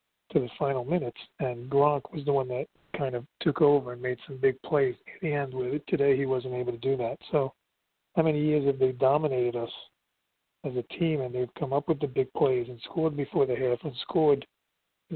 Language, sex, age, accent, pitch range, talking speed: English, male, 40-59, American, 130-160 Hz, 220 wpm